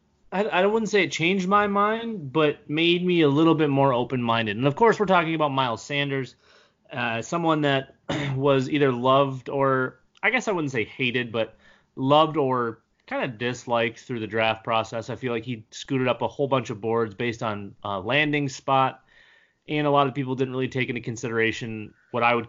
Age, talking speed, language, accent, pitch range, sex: 30-49, 200 wpm, English, American, 115-140 Hz, male